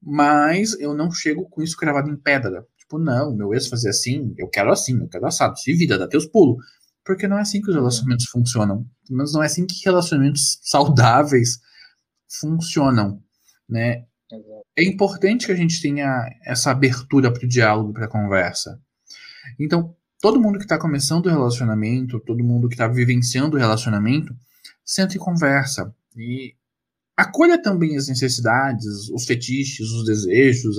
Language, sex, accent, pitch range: Portuguese, male, Brazilian, 120-165 Hz